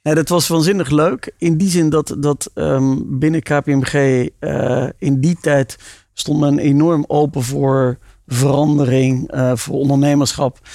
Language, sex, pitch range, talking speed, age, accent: Dutch, male, 125-145 Hz, 135 wpm, 40-59, Dutch